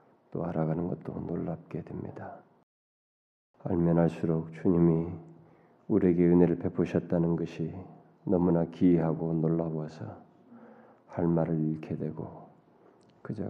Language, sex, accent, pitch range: Korean, male, native, 80-90 Hz